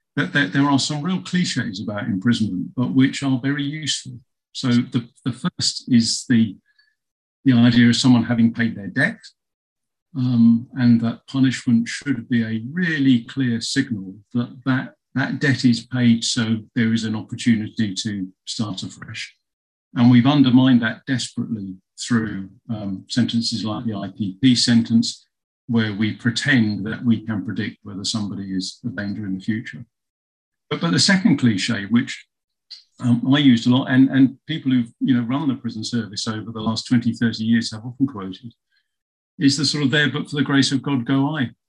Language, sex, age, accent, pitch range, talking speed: English, male, 50-69, British, 110-135 Hz, 175 wpm